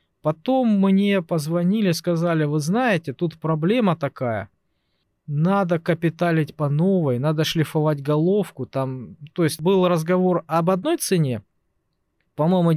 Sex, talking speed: male, 115 wpm